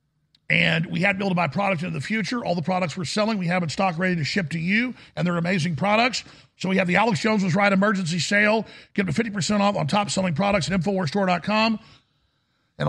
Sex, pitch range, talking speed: male, 180-210 Hz, 235 wpm